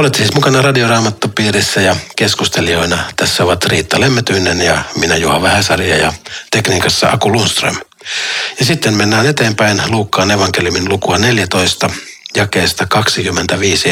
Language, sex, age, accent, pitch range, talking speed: Finnish, male, 60-79, native, 95-125 Hz, 120 wpm